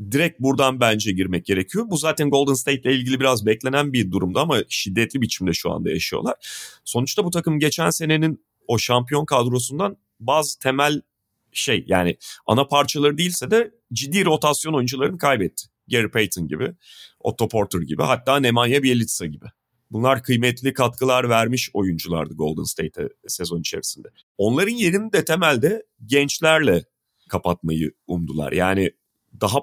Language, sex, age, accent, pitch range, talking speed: Turkish, male, 40-59, native, 100-140 Hz, 140 wpm